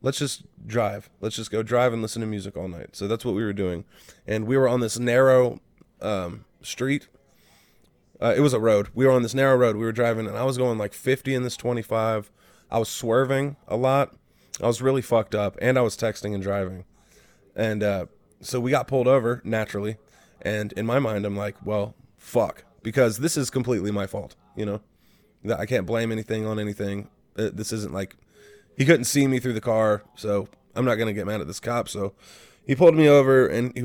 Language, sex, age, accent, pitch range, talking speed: English, male, 20-39, American, 105-125 Hz, 215 wpm